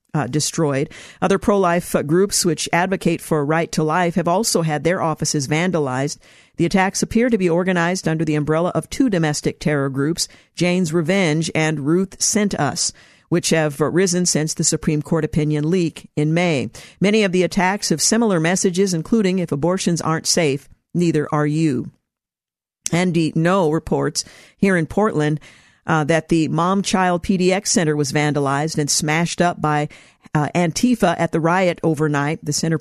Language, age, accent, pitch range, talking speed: English, 50-69, American, 155-185 Hz, 165 wpm